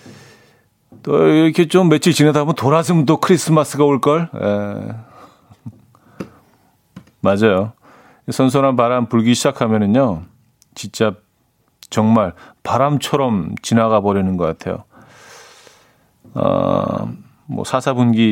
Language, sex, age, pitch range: Korean, male, 40-59, 110-145 Hz